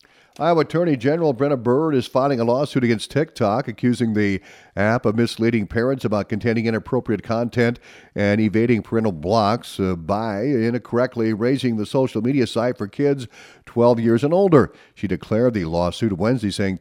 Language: English